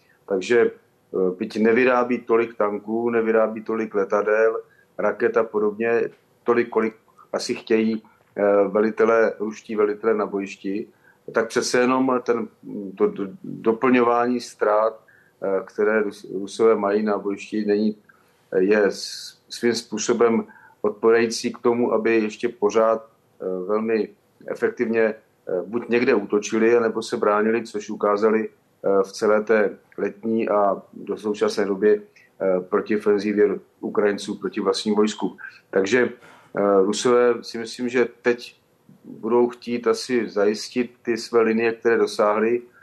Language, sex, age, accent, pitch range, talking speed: Czech, male, 40-59, native, 105-115 Hz, 110 wpm